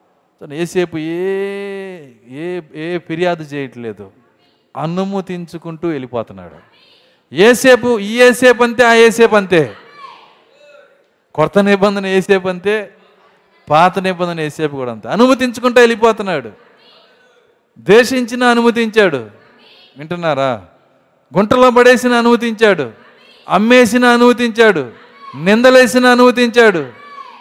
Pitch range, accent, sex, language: 150-240 Hz, native, male, Telugu